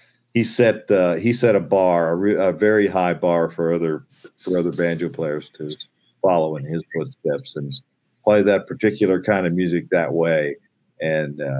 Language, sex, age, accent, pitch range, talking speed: English, male, 50-69, American, 80-95 Hz, 175 wpm